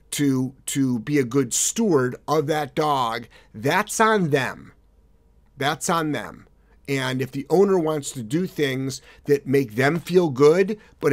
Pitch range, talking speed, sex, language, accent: 130-170 Hz, 155 wpm, male, English, American